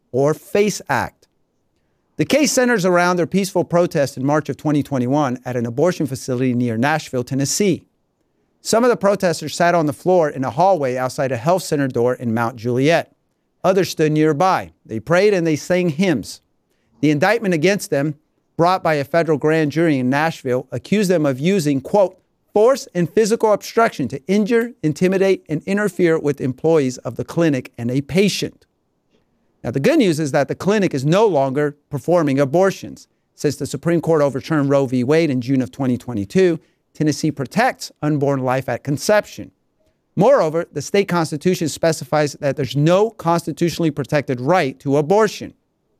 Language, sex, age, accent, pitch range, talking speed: English, male, 50-69, American, 135-180 Hz, 165 wpm